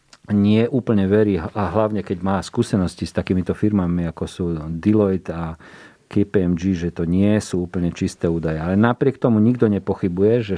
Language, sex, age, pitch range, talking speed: Slovak, male, 40-59, 95-110 Hz, 165 wpm